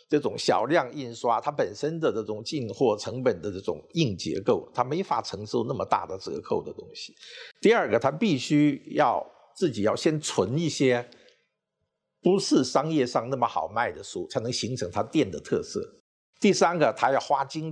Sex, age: male, 50-69